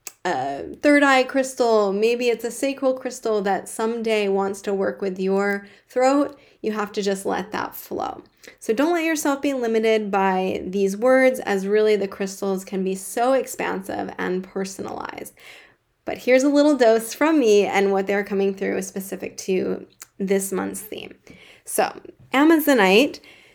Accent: American